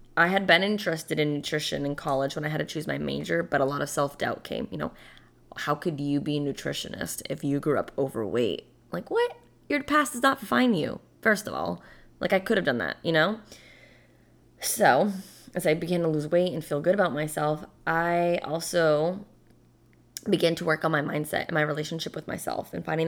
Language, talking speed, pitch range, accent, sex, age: English, 210 wpm, 145-185 Hz, American, female, 20-39